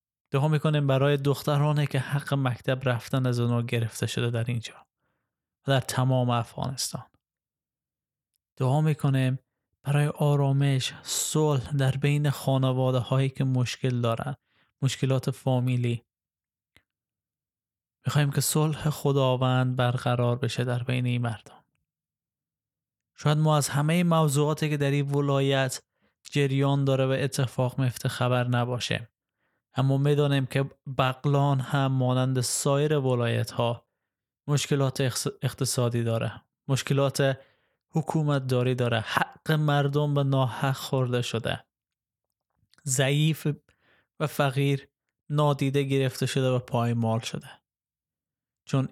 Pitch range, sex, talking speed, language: 125-145 Hz, male, 110 wpm, Persian